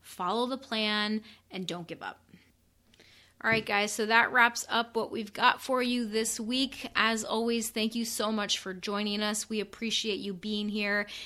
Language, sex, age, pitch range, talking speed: English, female, 30-49, 200-230 Hz, 185 wpm